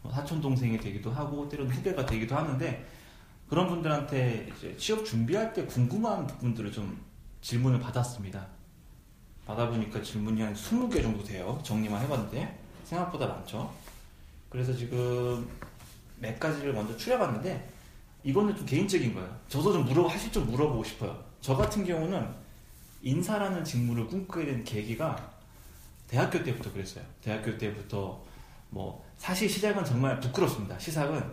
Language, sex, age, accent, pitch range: Korean, male, 30-49, native, 110-150 Hz